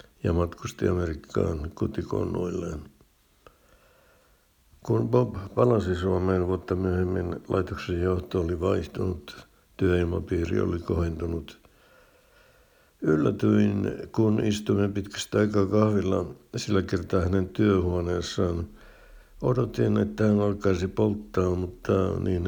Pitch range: 90-100 Hz